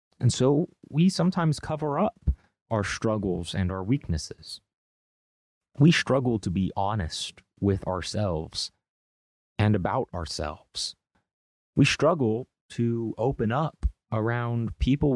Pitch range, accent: 90-125 Hz, American